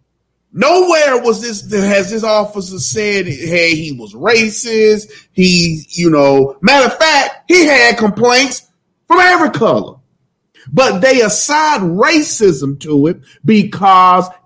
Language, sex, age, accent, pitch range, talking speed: English, male, 40-59, American, 160-235 Hz, 125 wpm